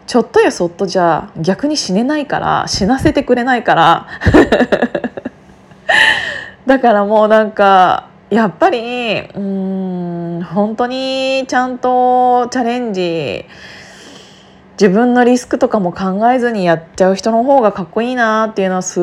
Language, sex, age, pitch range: Japanese, female, 20-39, 190-250 Hz